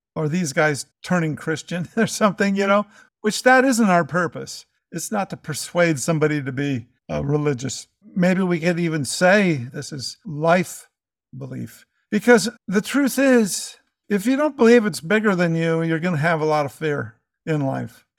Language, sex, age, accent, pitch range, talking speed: English, male, 50-69, American, 150-200 Hz, 175 wpm